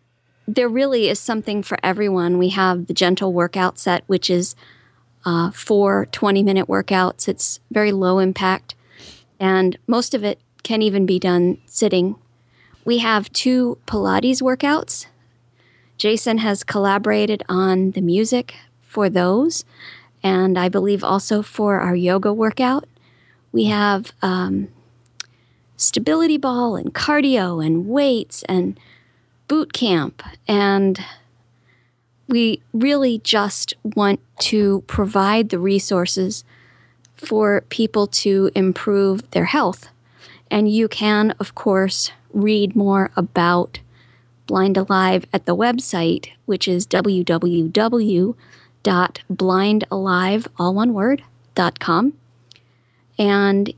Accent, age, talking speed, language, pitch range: American, 40-59, 105 wpm, English, 180-215 Hz